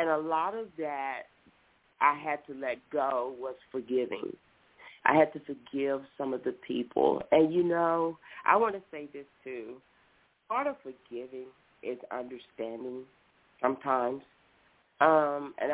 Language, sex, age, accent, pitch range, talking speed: English, female, 40-59, American, 130-160 Hz, 140 wpm